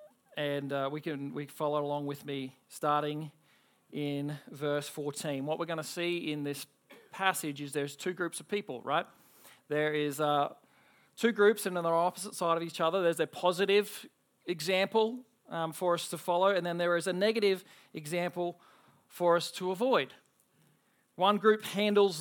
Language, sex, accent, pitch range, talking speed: English, male, Australian, 165-205 Hz, 175 wpm